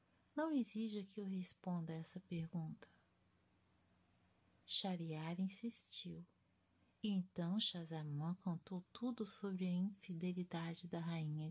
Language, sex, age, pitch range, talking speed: Portuguese, female, 50-69, 140-195 Hz, 105 wpm